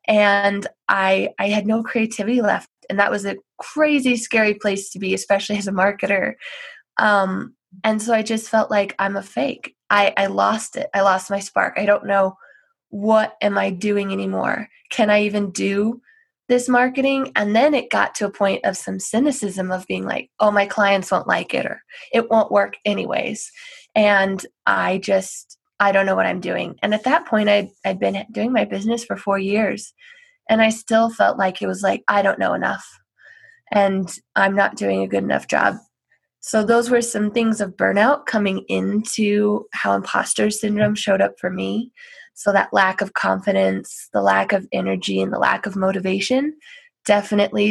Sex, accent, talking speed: female, American, 185 wpm